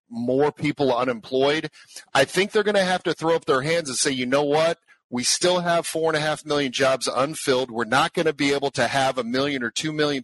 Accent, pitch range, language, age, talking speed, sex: American, 125-155 Hz, English, 50-69, 245 wpm, male